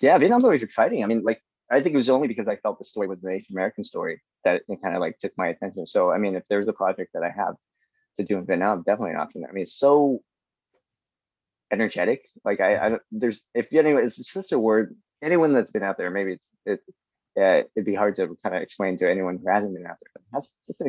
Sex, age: male, 30-49